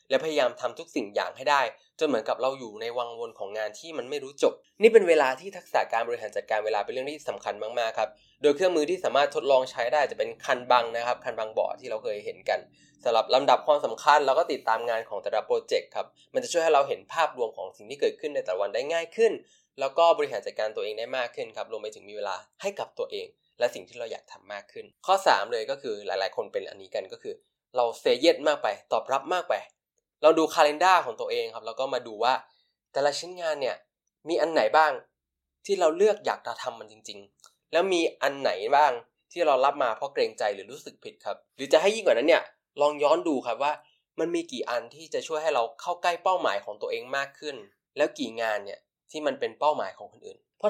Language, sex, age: Thai, male, 20-39